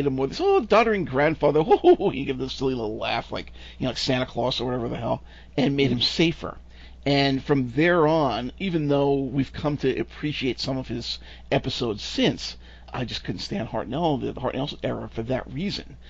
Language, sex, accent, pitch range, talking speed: English, male, American, 125-165 Hz, 200 wpm